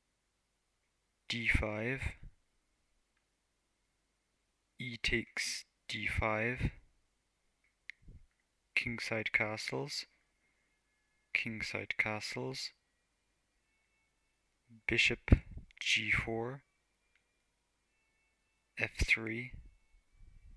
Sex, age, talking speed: male, 30-49, 30 wpm